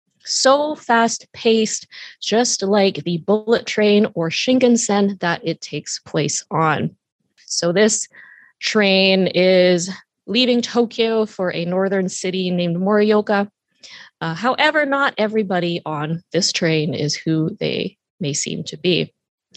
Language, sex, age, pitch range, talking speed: English, female, 20-39, 180-240 Hz, 125 wpm